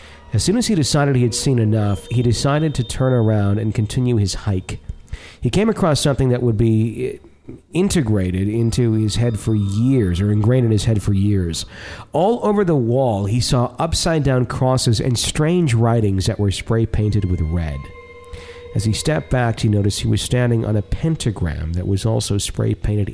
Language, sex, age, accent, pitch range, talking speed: English, male, 40-59, American, 95-120 Hz, 180 wpm